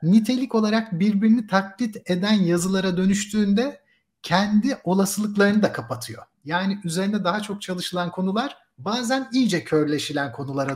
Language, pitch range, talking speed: Turkish, 160-220 Hz, 115 wpm